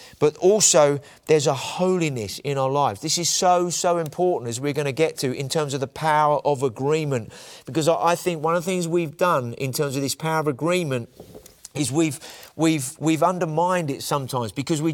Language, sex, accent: English, male, British